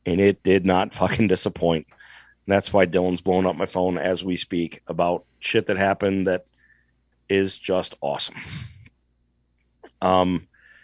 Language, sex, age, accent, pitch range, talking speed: English, male, 40-59, American, 95-115 Hz, 145 wpm